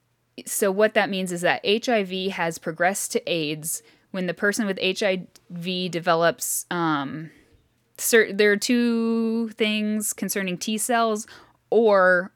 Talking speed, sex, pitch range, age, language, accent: 125 wpm, female, 165-210 Hz, 10-29, English, American